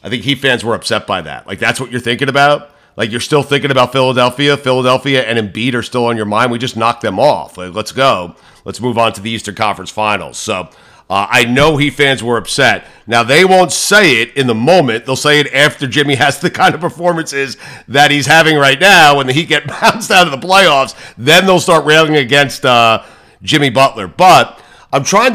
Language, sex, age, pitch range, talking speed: English, male, 50-69, 120-160 Hz, 225 wpm